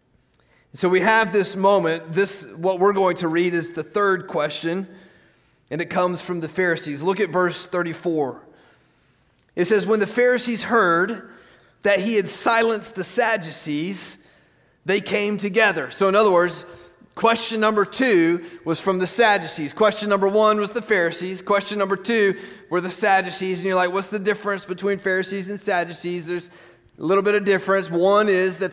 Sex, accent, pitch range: male, American, 170-200 Hz